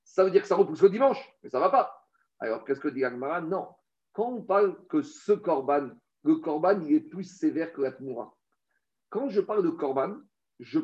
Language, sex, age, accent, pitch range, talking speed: French, male, 50-69, French, 160-235 Hz, 220 wpm